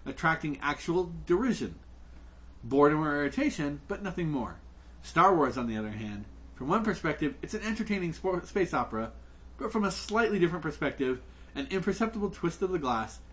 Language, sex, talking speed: English, male, 160 wpm